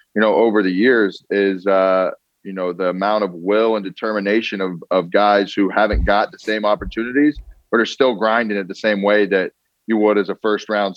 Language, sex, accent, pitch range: English, male, American, 95-110 Hz